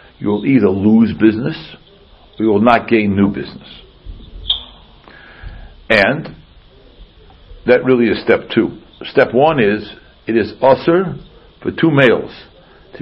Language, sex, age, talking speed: English, male, 60-79, 130 wpm